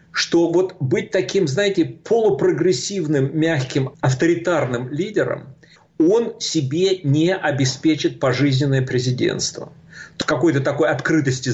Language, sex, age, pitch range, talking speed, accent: Russian, male, 50-69, 135-185 Hz, 95 wpm, native